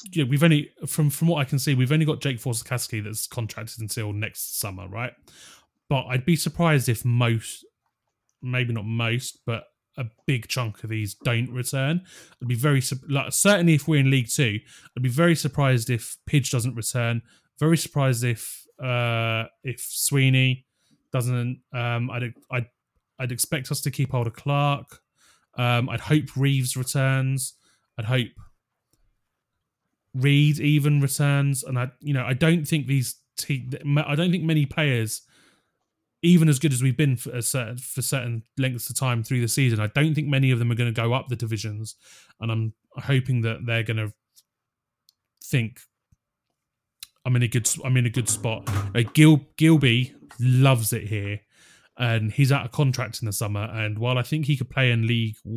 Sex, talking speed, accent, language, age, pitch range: male, 180 wpm, British, English, 20-39, 115-140 Hz